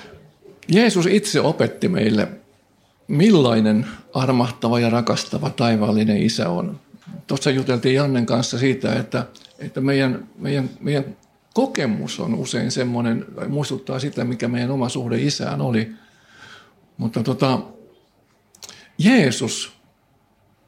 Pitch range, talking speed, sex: 120-150 Hz, 100 wpm, male